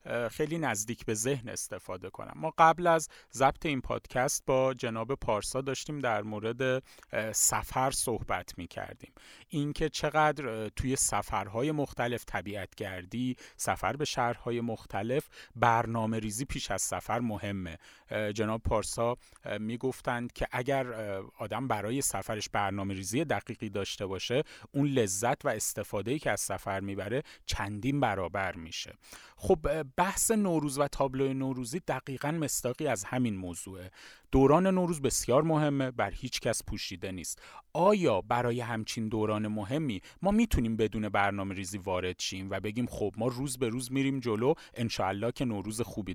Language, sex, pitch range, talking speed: Persian, male, 105-140 Hz, 140 wpm